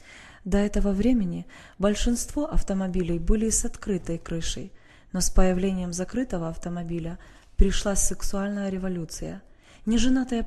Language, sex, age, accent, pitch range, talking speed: Russian, female, 20-39, native, 180-220 Hz, 105 wpm